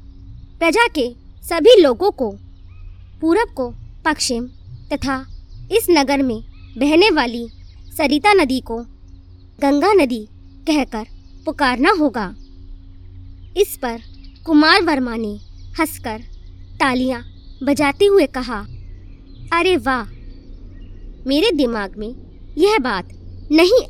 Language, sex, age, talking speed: Hindi, male, 20-39, 100 wpm